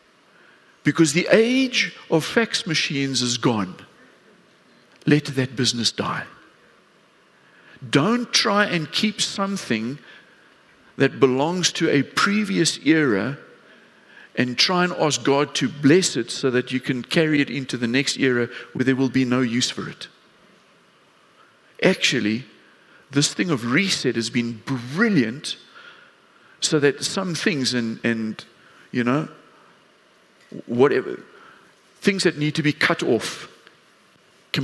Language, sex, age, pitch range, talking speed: English, male, 50-69, 125-175 Hz, 130 wpm